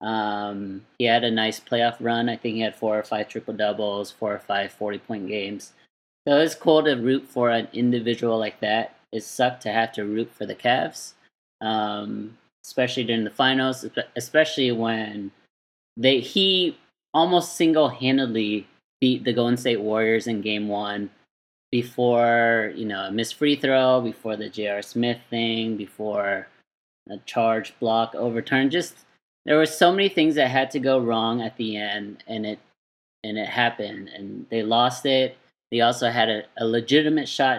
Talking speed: 170 wpm